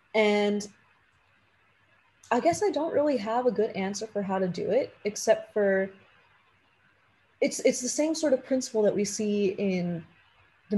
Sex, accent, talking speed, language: female, American, 160 wpm, English